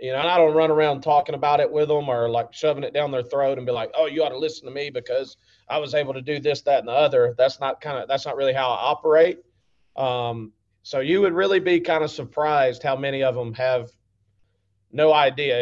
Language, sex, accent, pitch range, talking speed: English, male, American, 125-155 Hz, 245 wpm